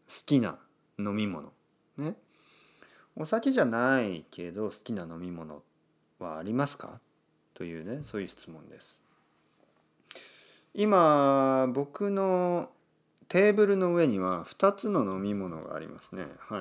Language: Japanese